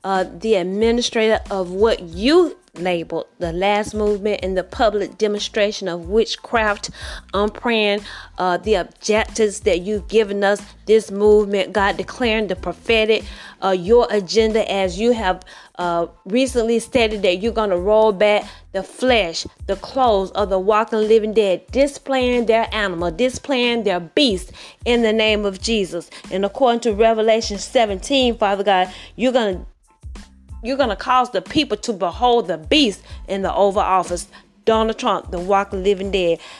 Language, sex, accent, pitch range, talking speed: English, female, American, 195-235 Hz, 155 wpm